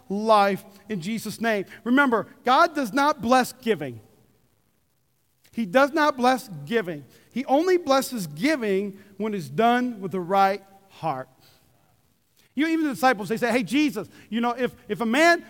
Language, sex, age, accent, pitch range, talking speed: English, male, 40-59, American, 230-300 Hz, 160 wpm